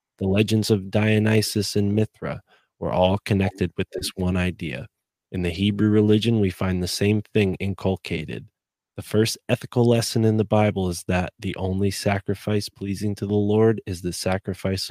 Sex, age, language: male, 20-39, English